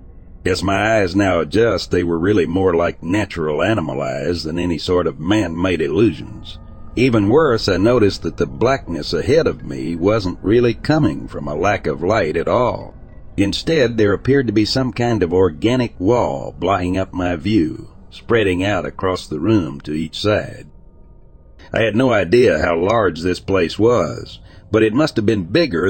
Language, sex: English, male